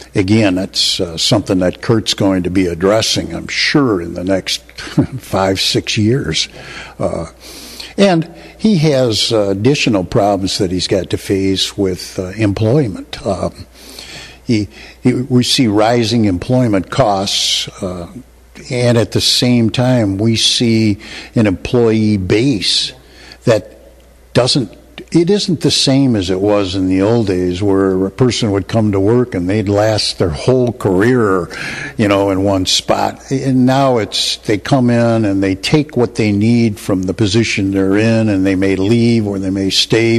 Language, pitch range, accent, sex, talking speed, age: English, 95-125 Hz, American, male, 160 wpm, 60-79